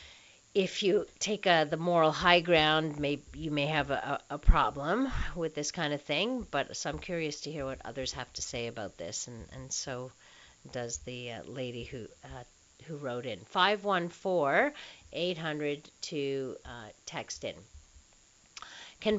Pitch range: 140-200 Hz